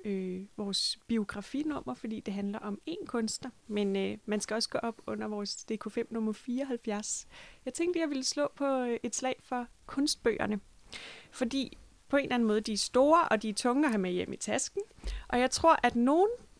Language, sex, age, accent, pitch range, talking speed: Danish, female, 20-39, native, 210-260 Hz, 200 wpm